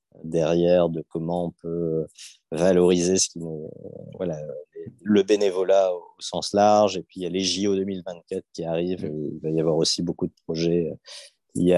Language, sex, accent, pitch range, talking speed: French, male, French, 90-110 Hz, 175 wpm